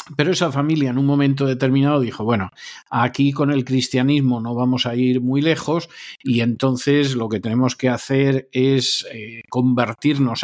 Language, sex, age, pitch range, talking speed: Spanish, male, 50-69, 120-155 Hz, 160 wpm